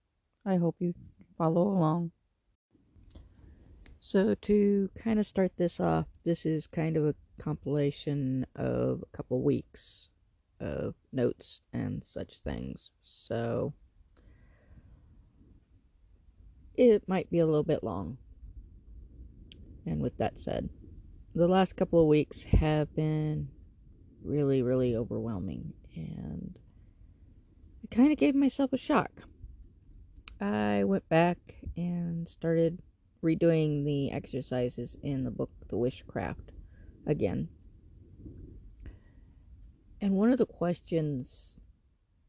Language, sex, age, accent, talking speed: English, female, 40-59, American, 110 wpm